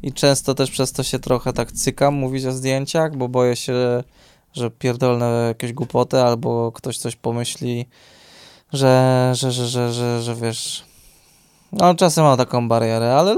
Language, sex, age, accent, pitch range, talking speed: Polish, male, 20-39, native, 120-135 Hz, 165 wpm